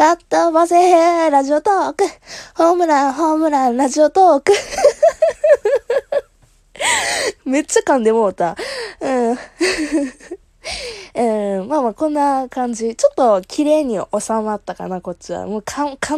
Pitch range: 215-330 Hz